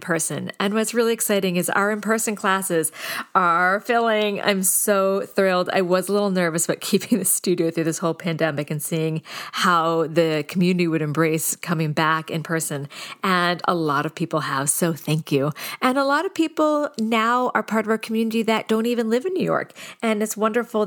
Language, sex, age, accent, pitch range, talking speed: English, female, 40-59, American, 165-220 Hz, 195 wpm